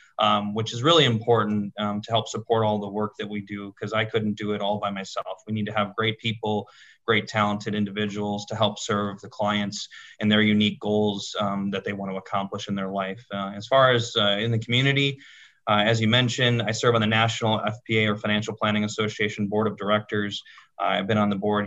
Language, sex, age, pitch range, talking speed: English, male, 20-39, 105-115 Hz, 225 wpm